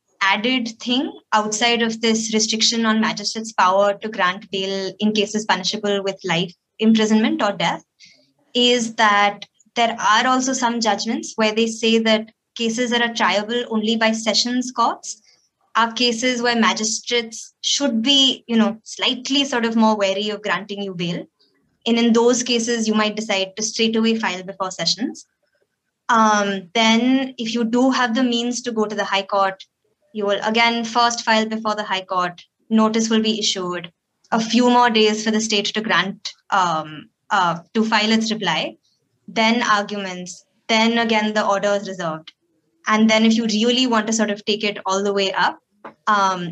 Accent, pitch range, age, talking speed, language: Indian, 200-235 Hz, 20-39, 175 wpm, English